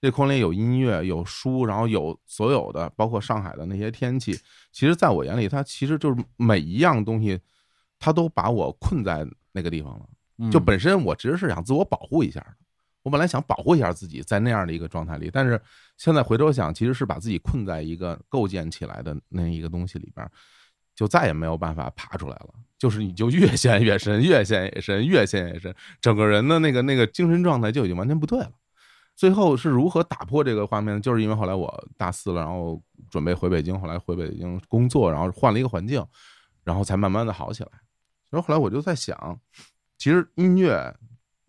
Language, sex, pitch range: Chinese, male, 90-130 Hz